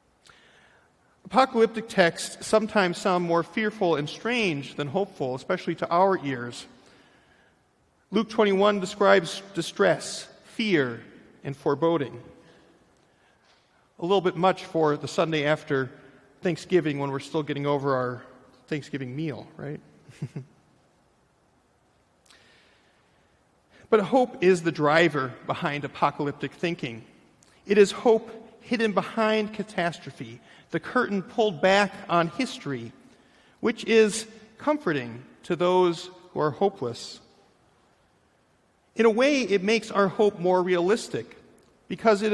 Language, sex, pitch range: English, male, 155-210 Hz